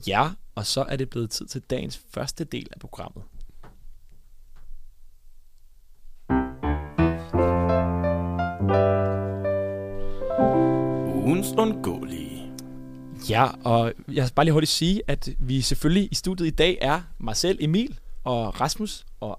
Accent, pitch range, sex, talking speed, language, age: native, 110-150 Hz, male, 105 wpm, Danish, 20-39